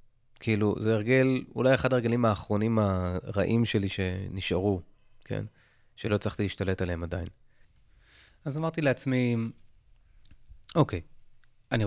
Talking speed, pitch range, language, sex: 105 wpm, 105-125 Hz, Hebrew, male